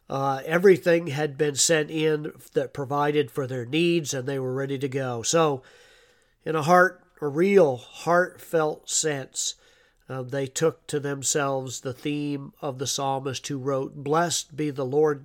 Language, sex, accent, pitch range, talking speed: English, male, American, 135-160 Hz, 160 wpm